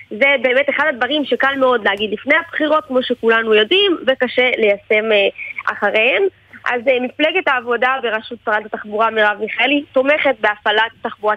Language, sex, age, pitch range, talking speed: Hebrew, female, 20-39, 230-295 Hz, 135 wpm